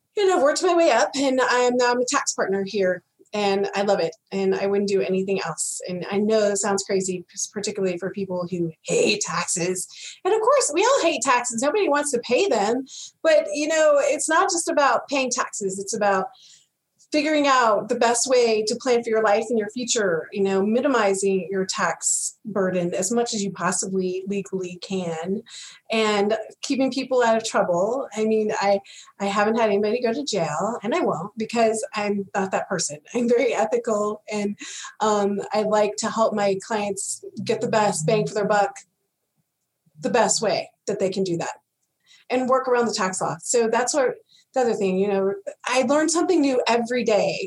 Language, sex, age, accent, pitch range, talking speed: English, female, 30-49, American, 195-255 Hz, 190 wpm